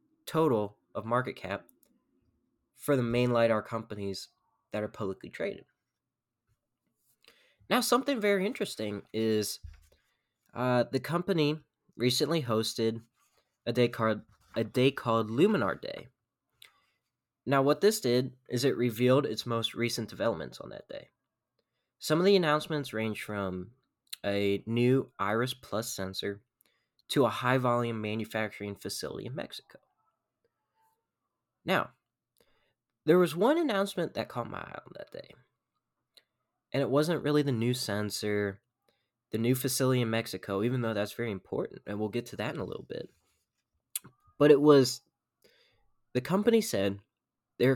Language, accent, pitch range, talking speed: English, American, 110-150 Hz, 135 wpm